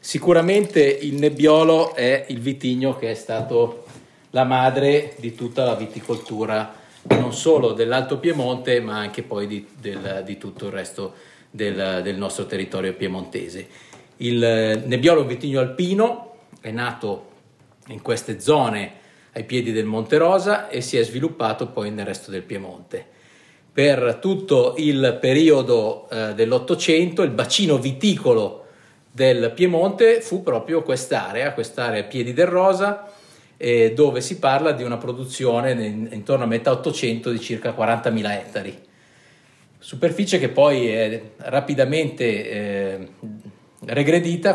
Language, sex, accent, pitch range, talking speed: Italian, male, native, 110-160 Hz, 130 wpm